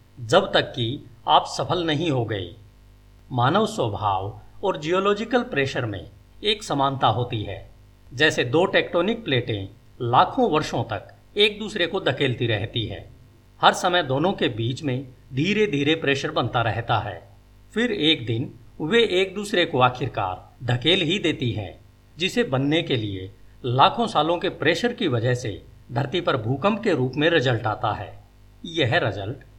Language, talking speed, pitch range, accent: Hindi, 155 wpm, 105-165 Hz, native